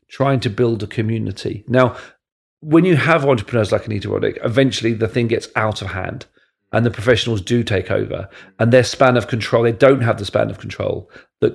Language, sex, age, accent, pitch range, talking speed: English, male, 40-59, British, 105-130 Hz, 205 wpm